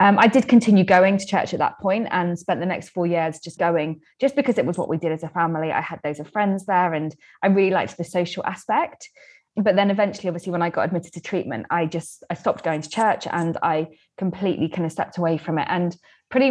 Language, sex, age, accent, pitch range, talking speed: English, female, 20-39, British, 165-190 Hz, 250 wpm